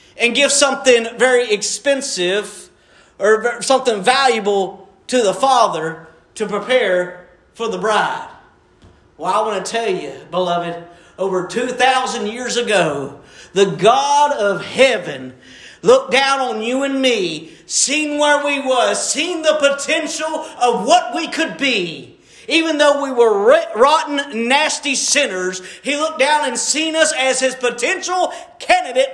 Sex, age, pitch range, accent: male, 40-59, 245-310 Hz, American